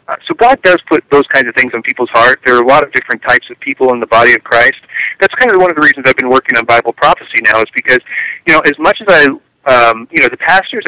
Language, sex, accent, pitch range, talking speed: English, male, American, 130-175 Hz, 285 wpm